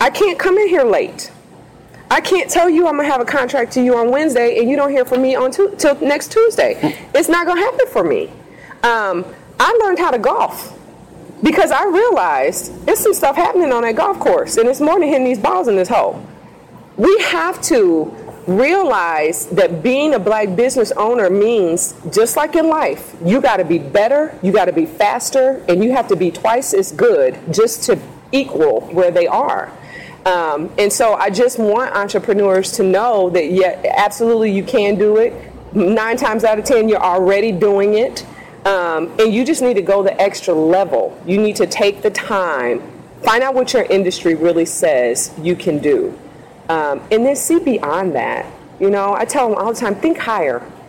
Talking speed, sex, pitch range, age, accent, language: 200 wpm, female, 200-320 Hz, 40-59, American, English